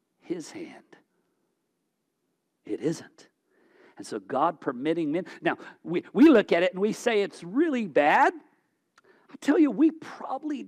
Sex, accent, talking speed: male, American, 145 wpm